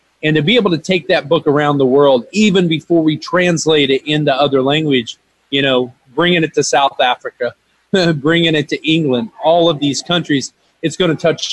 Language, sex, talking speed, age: English, male, 200 wpm, 30-49